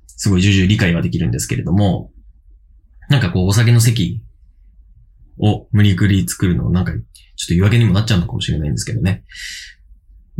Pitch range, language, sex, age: 85-110 Hz, Japanese, male, 20-39